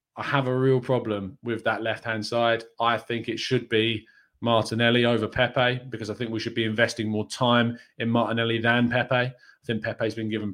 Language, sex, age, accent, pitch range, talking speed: English, male, 20-39, British, 110-140 Hz, 200 wpm